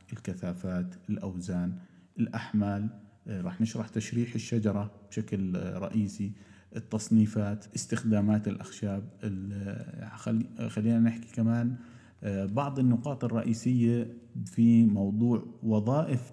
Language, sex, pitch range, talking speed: Arabic, male, 105-120 Hz, 75 wpm